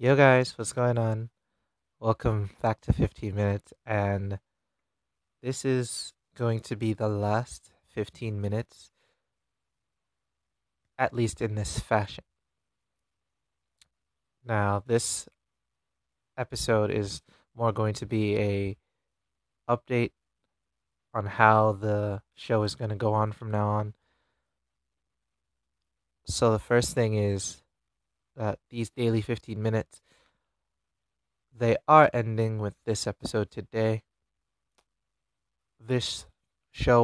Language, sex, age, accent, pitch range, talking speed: English, male, 20-39, American, 100-120 Hz, 105 wpm